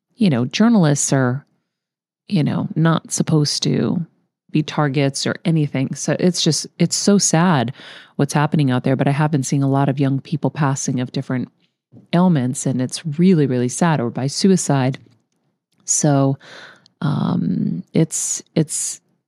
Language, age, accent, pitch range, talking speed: English, 40-59, American, 130-170 Hz, 155 wpm